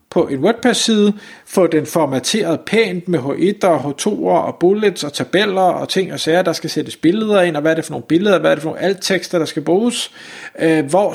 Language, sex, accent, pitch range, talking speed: Danish, male, native, 145-190 Hz, 220 wpm